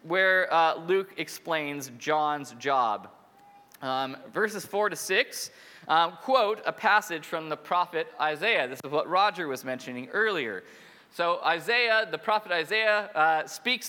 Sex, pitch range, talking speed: male, 150-215 Hz, 140 wpm